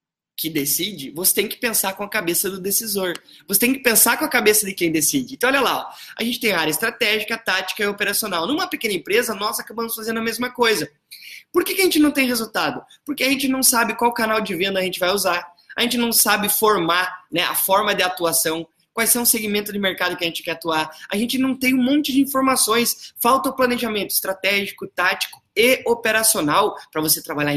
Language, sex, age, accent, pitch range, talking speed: Portuguese, male, 20-39, Brazilian, 175-245 Hz, 220 wpm